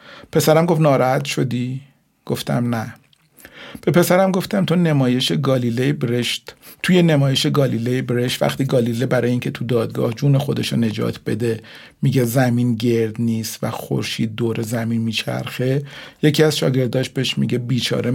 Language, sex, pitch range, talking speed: Persian, male, 120-155 Hz, 140 wpm